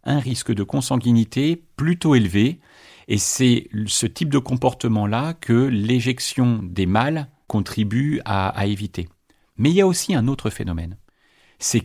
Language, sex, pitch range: French, male, 95-130 Hz